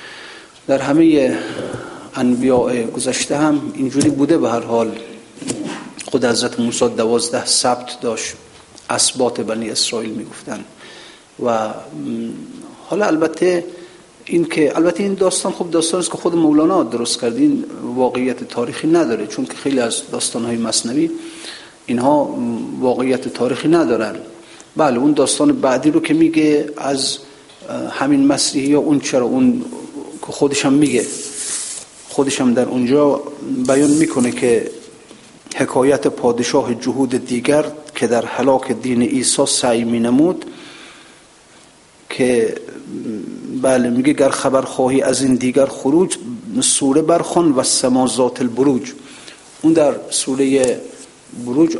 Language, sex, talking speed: Persian, male, 120 wpm